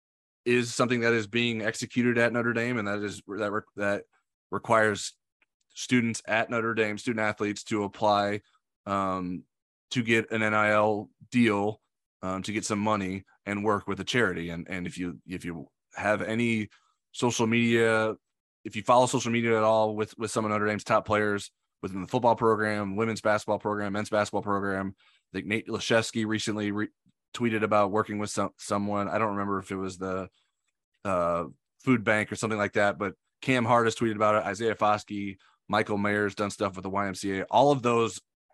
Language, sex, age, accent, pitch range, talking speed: English, male, 20-39, American, 100-110 Hz, 185 wpm